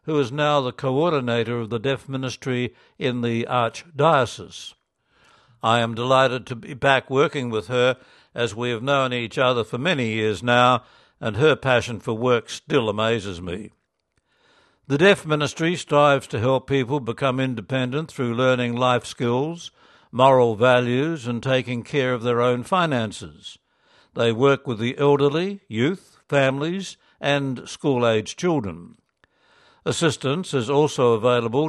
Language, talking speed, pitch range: English, 140 wpm, 120-145 Hz